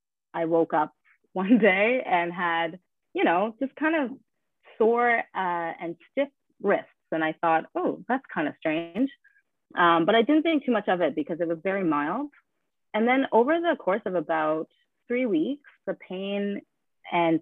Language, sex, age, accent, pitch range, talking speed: English, female, 30-49, American, 155-200 Hz, 175 wpm